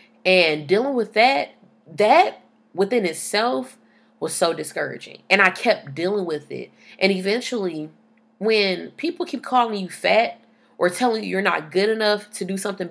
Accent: American